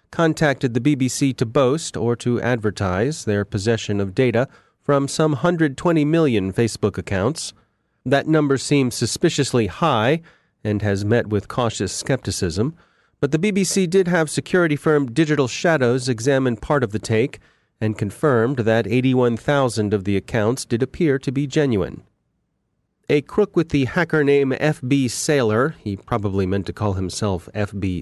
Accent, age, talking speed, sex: American, 30-49, 150 wpm, male